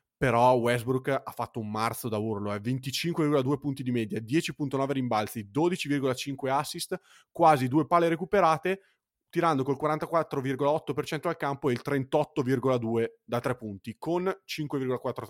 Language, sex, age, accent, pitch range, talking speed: Italian, male, 30-49, native, 115-145 Hz, 135 wpm